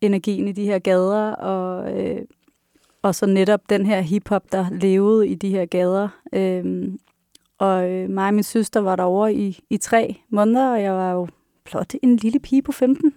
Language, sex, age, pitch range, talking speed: Danish, female, 30-49, 190-215 Hz, 185 wpm